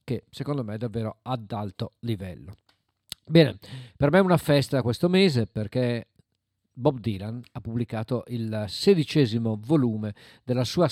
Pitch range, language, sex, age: 120-150 Hz, Italian, male, 50-69